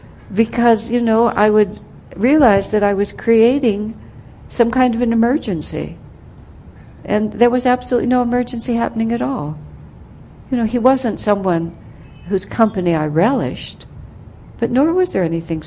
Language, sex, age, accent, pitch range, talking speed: English, female, 60-79, American, 160-230 Hz, 145 wpm